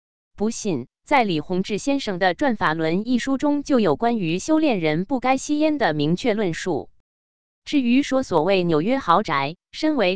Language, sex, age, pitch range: Chinese, female, 20-39, 165-270 Hz